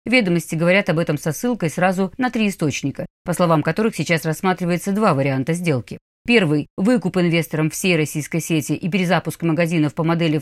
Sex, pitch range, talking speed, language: female, 160-225 Hz, 165 wpm, Russian